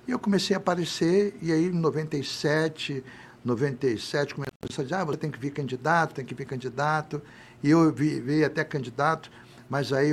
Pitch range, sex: 120-150 Hz, male